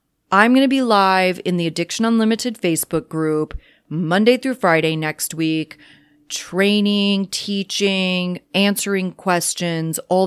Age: 30-49